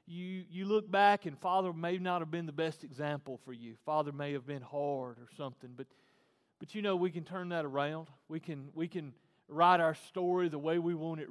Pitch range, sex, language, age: 160-215 Hz, male, English, 40-59